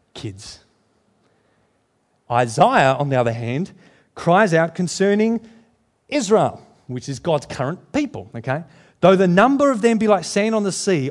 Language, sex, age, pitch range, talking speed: English, male, 40-59, 120-175 Hz, 145 wpm